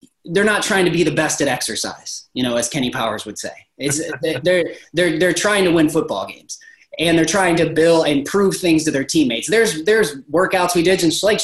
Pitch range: 145-190 Hz